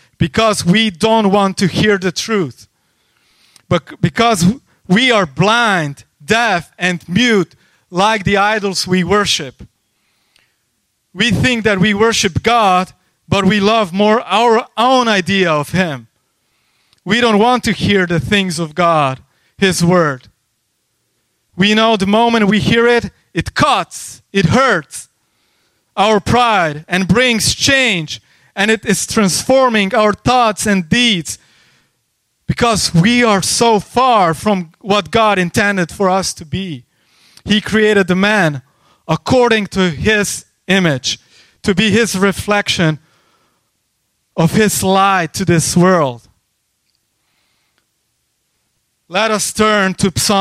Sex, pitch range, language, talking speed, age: male, 165-215 Hz, English, 125 wpm, 30-49